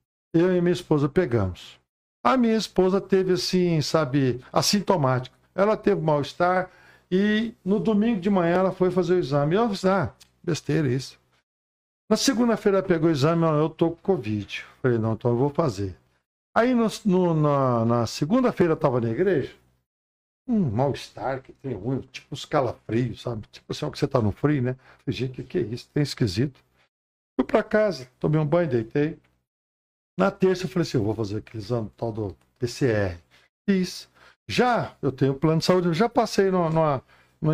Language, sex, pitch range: Portuguese, male, 120-185 Hz